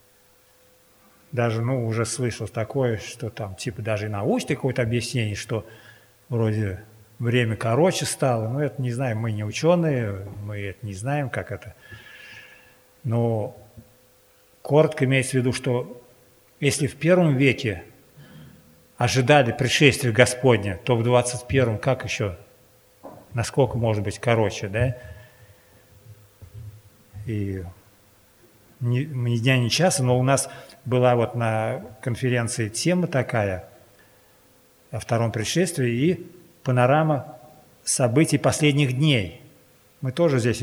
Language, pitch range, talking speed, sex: Russian, 105-130 Hz, 115 wpm, male